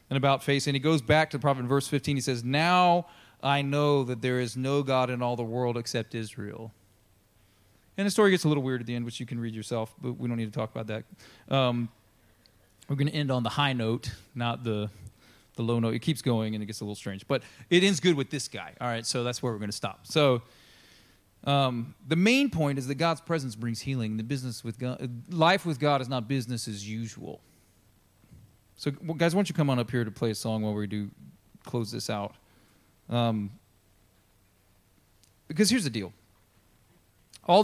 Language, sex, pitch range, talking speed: English, male, 110-140 Hz, 220 wpm